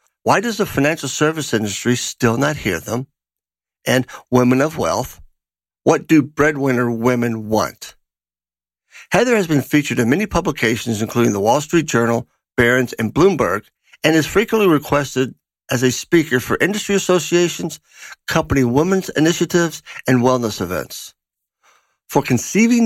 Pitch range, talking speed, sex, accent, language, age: 115-145 Hz, 135 wpm, male, American, English, 50-69